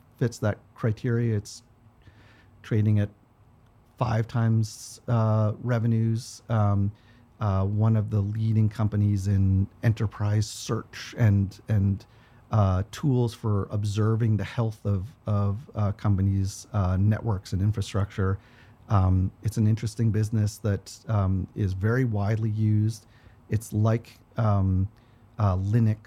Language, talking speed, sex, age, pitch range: English, 120 wpm, male, 40-59, 100-115 Hz